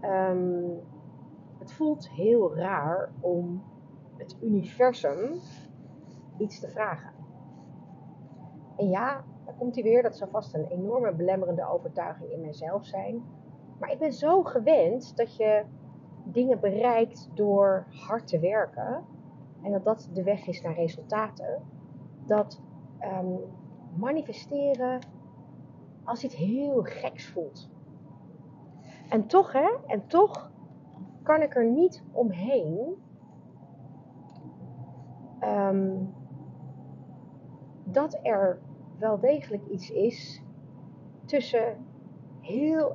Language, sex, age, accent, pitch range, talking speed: Dutch, female, 40-59, Dutch, 155-245 Hz, 105 wpm